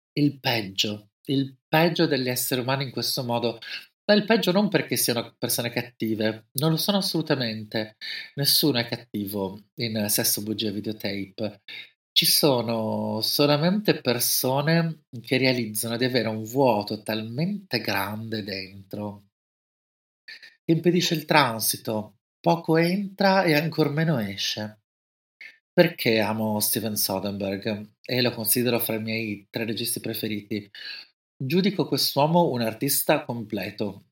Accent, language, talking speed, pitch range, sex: native, Italian, 125 wpm, 110-140 Hz, male